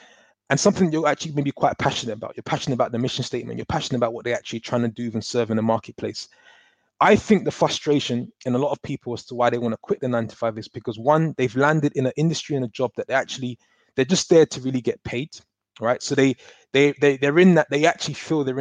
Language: English